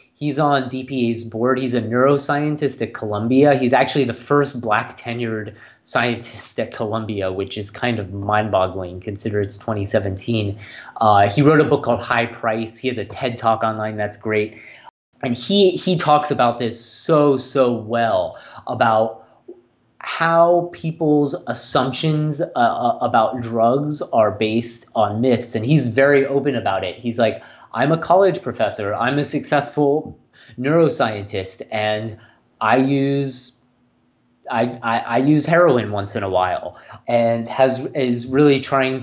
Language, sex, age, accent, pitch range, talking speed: English, male, 30-49, American, 110-140 Hz, 145 wpm